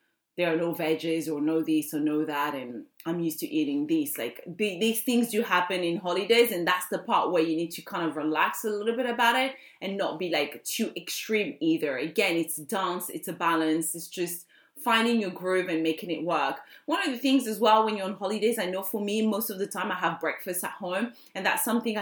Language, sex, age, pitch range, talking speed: English, female, 20-39, 160-200 Hz, 235 wpm